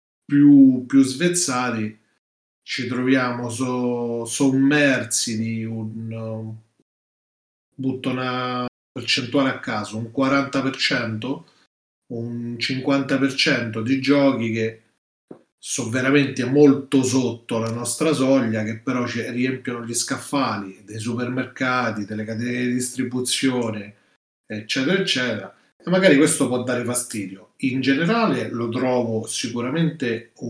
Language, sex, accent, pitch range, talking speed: Italian, male, native, 115-135 Hz, 105 wpm